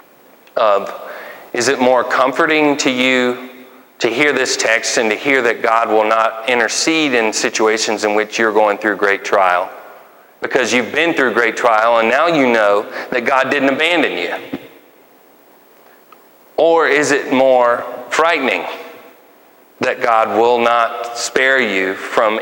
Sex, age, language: male, 30-49, English